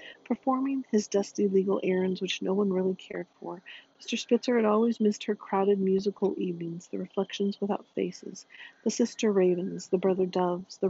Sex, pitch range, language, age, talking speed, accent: female, 190-215 Hz, English, 40-59, 170 wpm, American